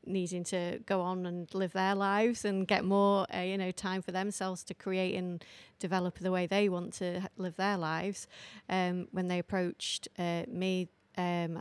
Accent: British